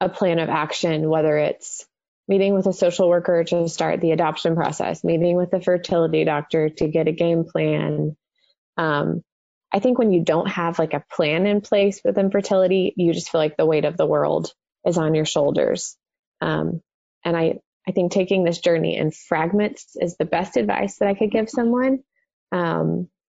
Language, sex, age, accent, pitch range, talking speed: English, female, 20-39, American, 170-195 Hz, 190 wpm